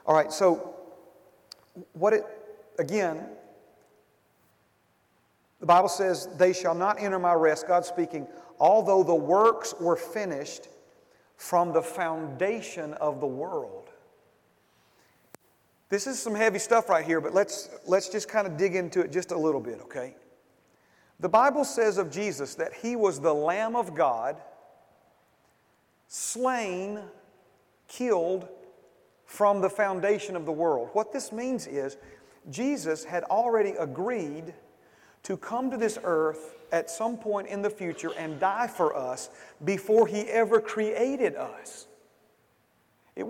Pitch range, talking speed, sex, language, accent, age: 175-220 Hz, 135 wpm, male, English, American, 40-59